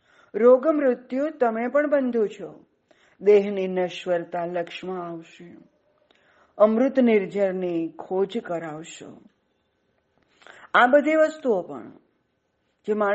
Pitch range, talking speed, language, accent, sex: 175-235 Hz, 75 wpm, Gujarati, native, female